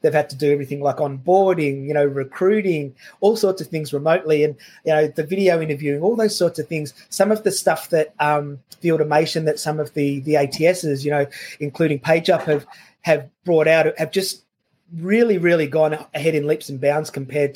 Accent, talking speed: Australian, 200 wpm